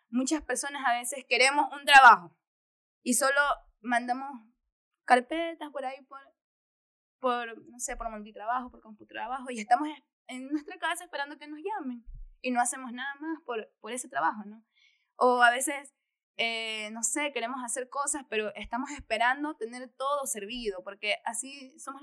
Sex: female